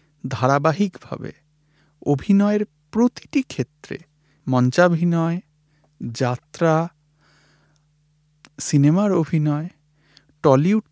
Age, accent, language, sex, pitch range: 50-69, native, Bengali, male, 140-180 Hz